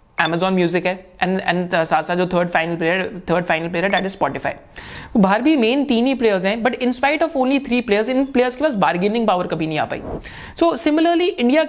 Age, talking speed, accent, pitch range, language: 20-39, 115 wpm, native, 185-245 Hz, Hindi